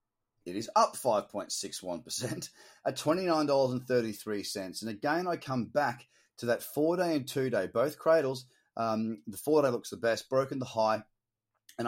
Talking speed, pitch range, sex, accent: 205 wpm, 115-155 Hz, male, Australian